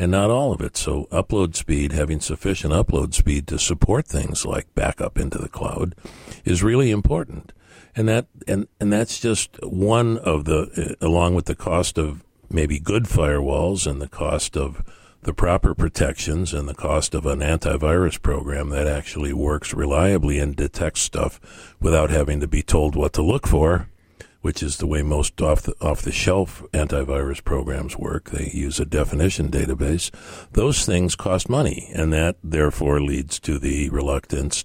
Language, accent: English, American